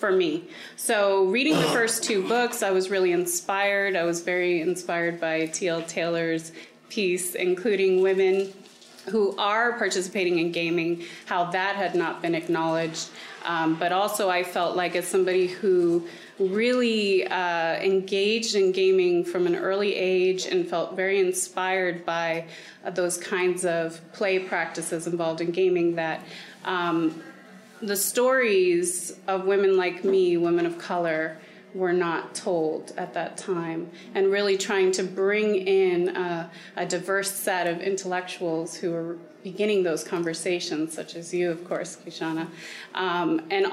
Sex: female